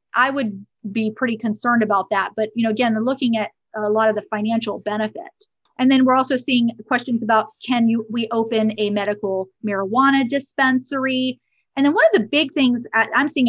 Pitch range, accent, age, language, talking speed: 215-265 Hz, American, 30-49, English, 195 wpm